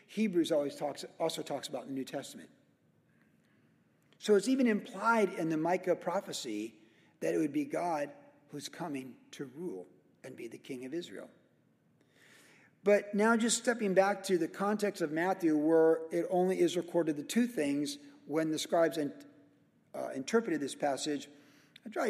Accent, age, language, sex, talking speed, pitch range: American, 50-69, English, male, 165 wpm, 150-200 Hz